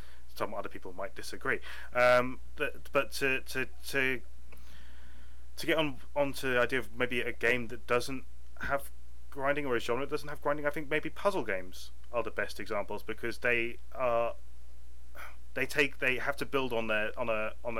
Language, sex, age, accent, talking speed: English, male, 30-49, British, 185 wpm